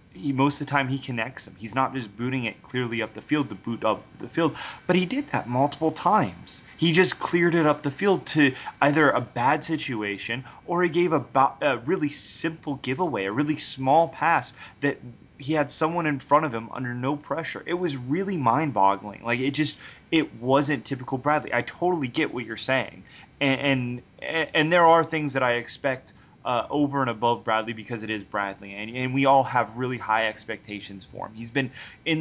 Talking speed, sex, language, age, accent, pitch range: 205 wpm, male, English, 20-39, American, 110-145 Hz